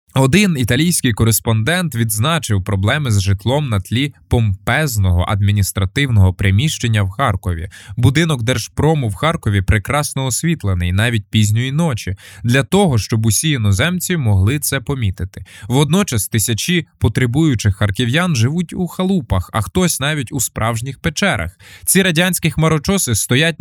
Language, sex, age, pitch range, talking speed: Ukrainian, male, 20-39, 100-150 Hz, 120 wpm